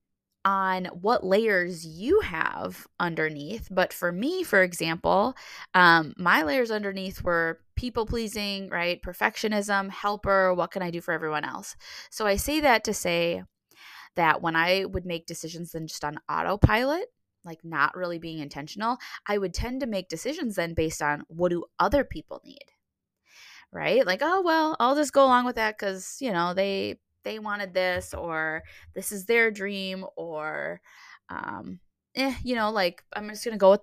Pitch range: 170-220 Hz